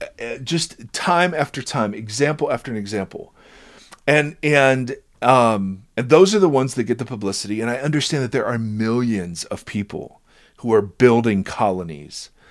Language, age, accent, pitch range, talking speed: English, 40-59, American, 105-125 Hz, 160 wpm